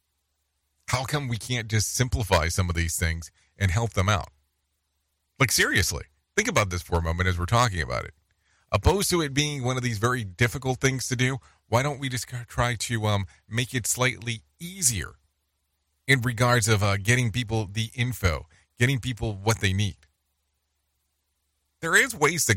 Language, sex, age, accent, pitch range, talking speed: English, male, 40-59, American, 75-125 Hz, 180 wpm